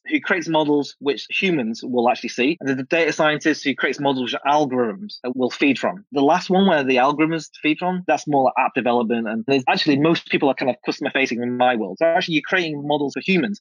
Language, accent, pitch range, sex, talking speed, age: English, British, 145-205 Hz, male, 240 wpm, 20-39